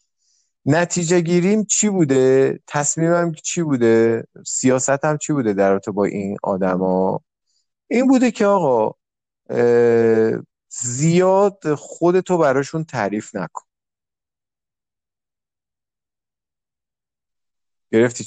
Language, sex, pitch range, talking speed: Persian, male, 105-160 Hz, 80 wpm